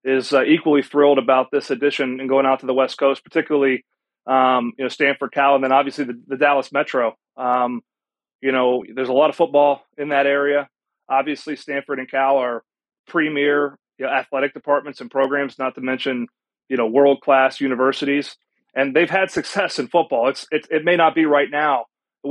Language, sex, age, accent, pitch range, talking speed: English, male, 30-49, American, 130-150 Hz, 195 wpm